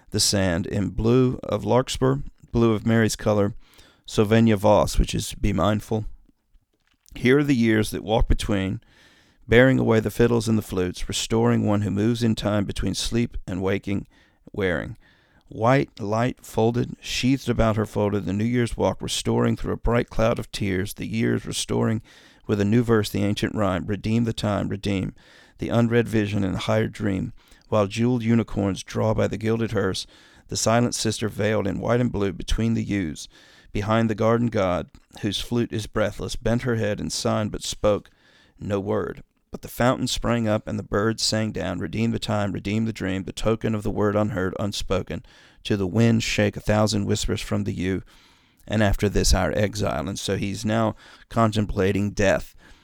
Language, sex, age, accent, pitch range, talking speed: English, male, 40-59, American, 100-115 Hz, 180 wpm